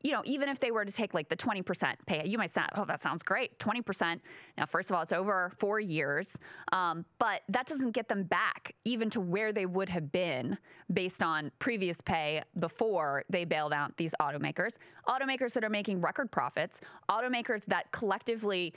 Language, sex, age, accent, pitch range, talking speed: English, female, 20-39, American, 175-220 Hz, 195 wpm